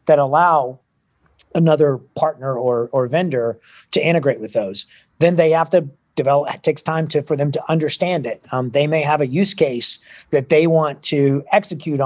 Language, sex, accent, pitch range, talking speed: English, male, American, 140-180 Hz, 185 wpm